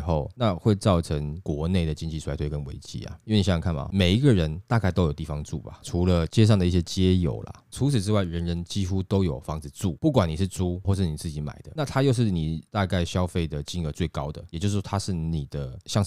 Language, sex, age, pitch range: Chinese, male, 20-39, 80-100 Hz